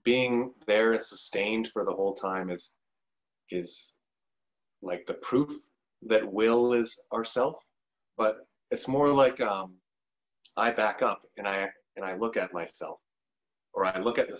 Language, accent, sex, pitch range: English, American, male, 95-125 Hz